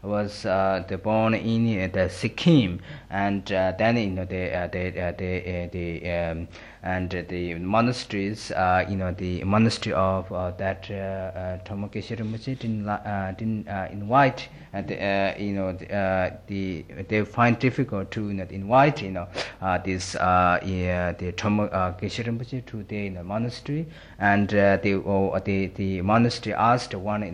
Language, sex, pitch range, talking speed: Italian, male, 95-110 Hz, 170 wpm